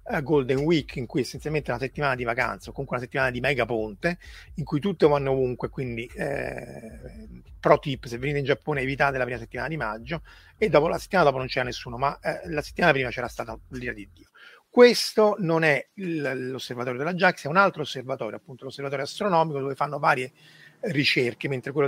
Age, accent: 30-49, native